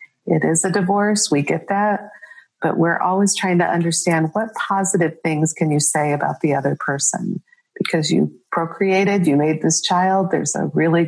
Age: 40-59